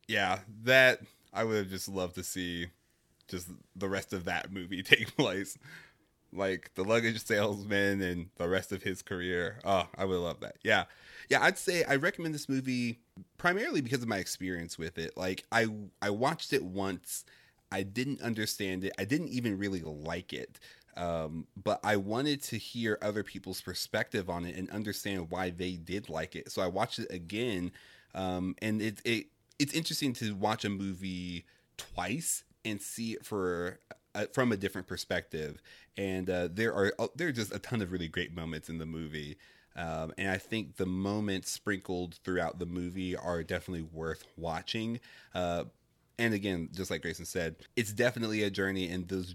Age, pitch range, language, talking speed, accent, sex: 30-49, 85-105 Hz, English, 180 wpm, American, male